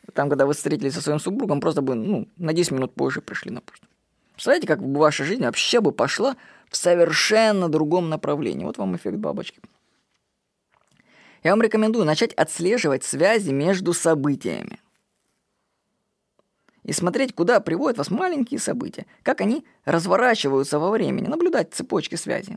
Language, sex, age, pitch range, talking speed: Russian, female, 20-39, 155-220 Hz, 150 wpm